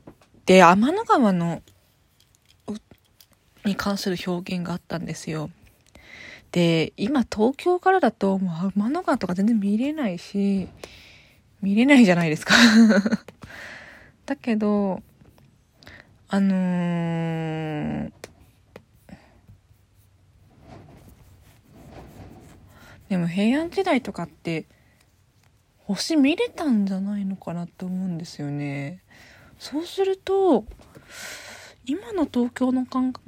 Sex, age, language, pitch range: female, 20-39, Japanese, 160-225 Hz